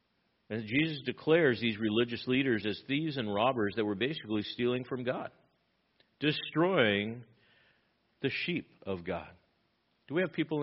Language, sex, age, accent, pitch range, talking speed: English, male, 50-69, American, 105-135 Hz, 140 wpm